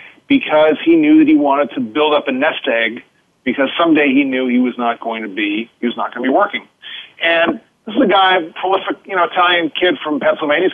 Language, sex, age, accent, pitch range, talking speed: English, male, 40-59, American, 140-225 Hz, 235 wpm